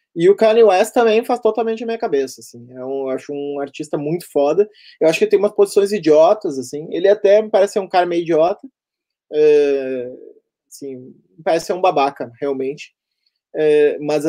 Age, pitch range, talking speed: 20-39, 135-205 Hz, 195 wpm